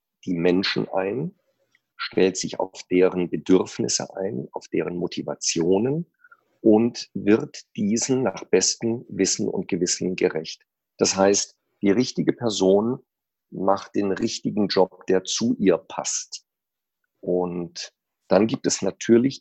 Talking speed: 120 wpm